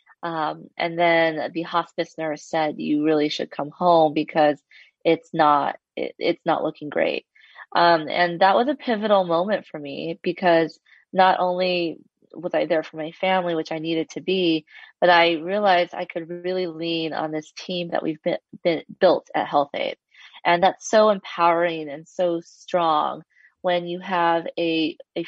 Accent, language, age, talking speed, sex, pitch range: American, English, 20-39, 175 wpm, female, 160-185 Hz